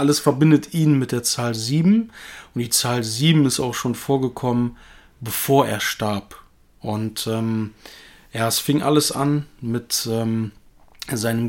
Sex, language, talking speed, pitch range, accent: male, German, 145 wpm, 110-130 Hz, German